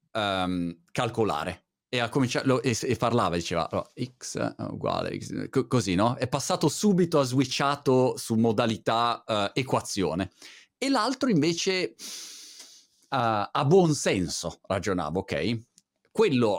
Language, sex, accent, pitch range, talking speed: Italian, male, native, 105-135 Hz, 130 wpm